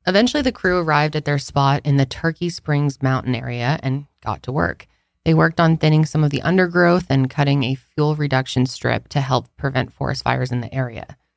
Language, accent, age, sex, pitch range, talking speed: English, American, 20-39, female, 140-175 Hz, 205 wpm